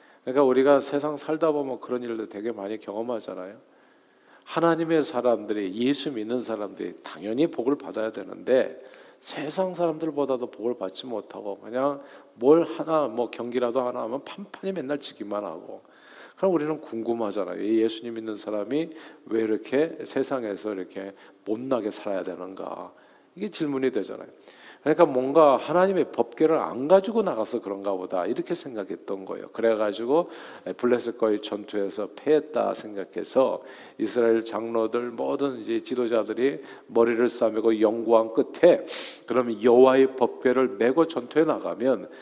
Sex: male